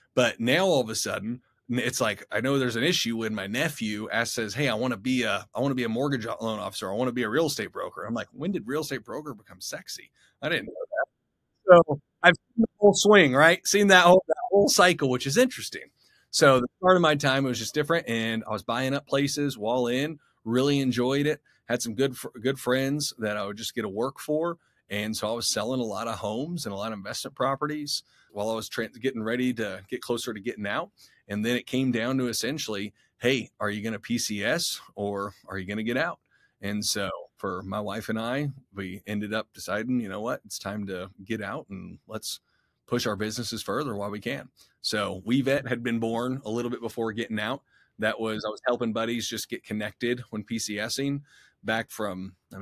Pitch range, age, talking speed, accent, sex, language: 105-135 Hz, 30-49, 230 wpm, American, male, English